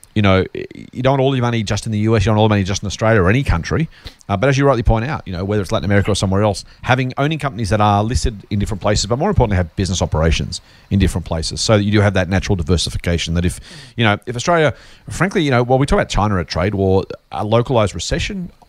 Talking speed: 280 wpm